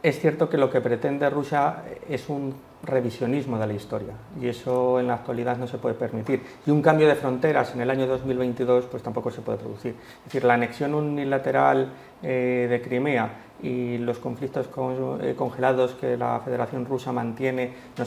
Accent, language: Spanish, Spanish